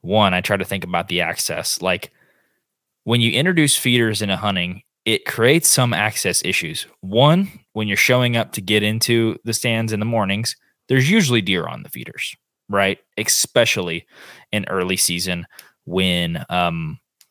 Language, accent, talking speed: English, American, 165 wpm